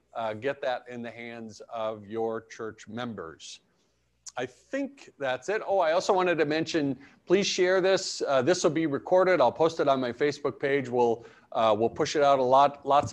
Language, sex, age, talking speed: English, male, 50-69, 200 wpm